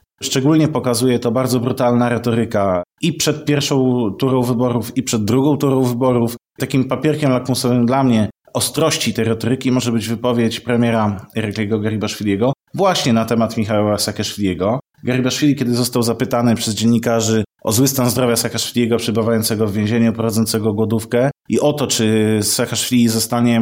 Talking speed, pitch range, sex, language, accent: 145 wpm, 115-140 Hz, male, Polish, native